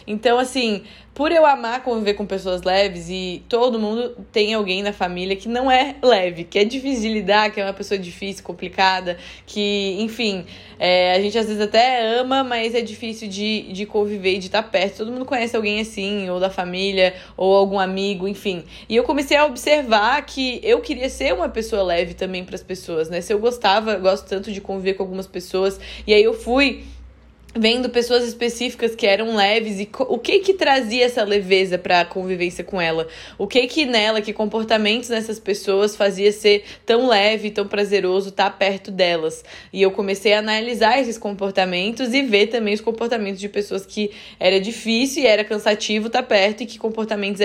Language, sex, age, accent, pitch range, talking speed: Portuguese, female, 10-29, Brazilian, 195-245 Hz, 195 wpm